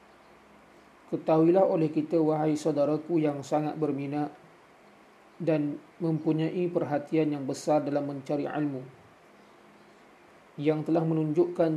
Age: 40-59